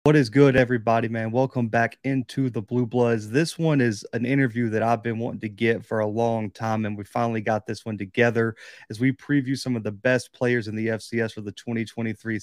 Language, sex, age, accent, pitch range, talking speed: English, male, 30-49, American, 115-135 Hz, 225 wpm